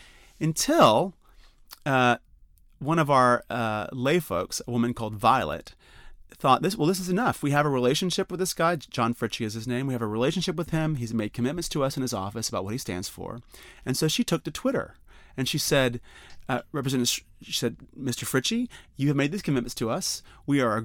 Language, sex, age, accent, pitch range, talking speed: English, male, 30-49, American, 115-165 Hz, 215 wpm